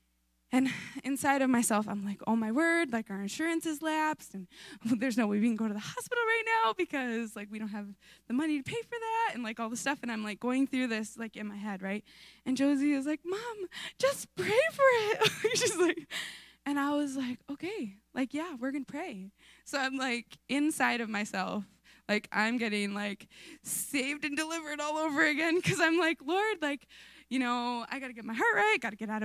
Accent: American